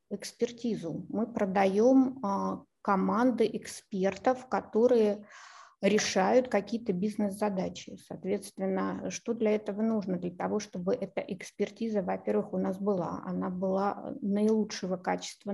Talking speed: 105 wpm